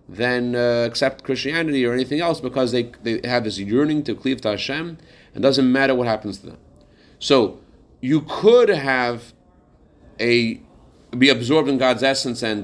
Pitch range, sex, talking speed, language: 110-150 Hz, male, 170 wpm, English